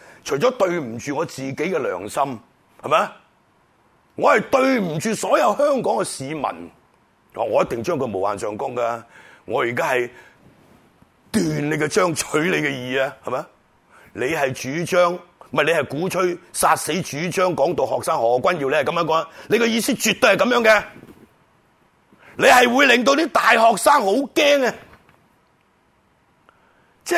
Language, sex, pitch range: Chinese, male, 165-250 Hz